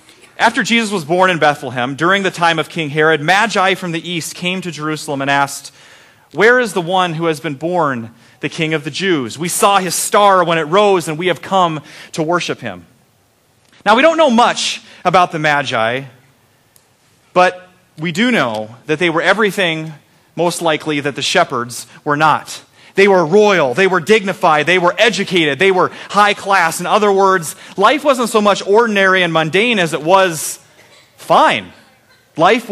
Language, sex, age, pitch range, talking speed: English, male, 30-49, 145-195 Hz, 180 wpm